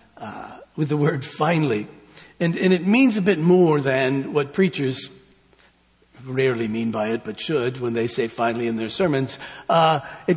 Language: English